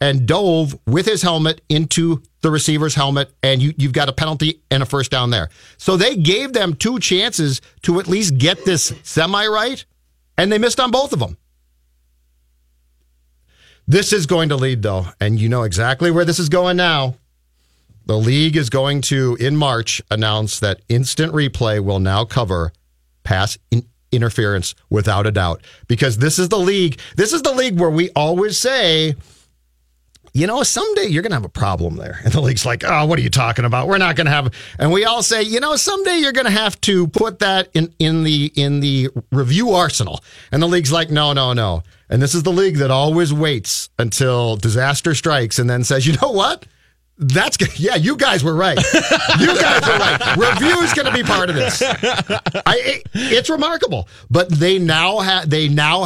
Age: 50-69